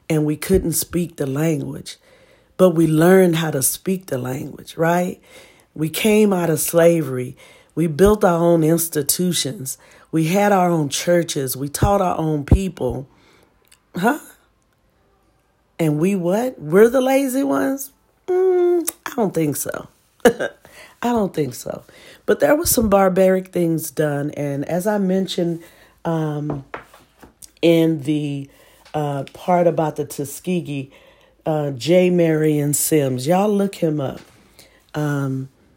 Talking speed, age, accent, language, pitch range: 135 wpm, 40-59, American, English, 145-180 Hz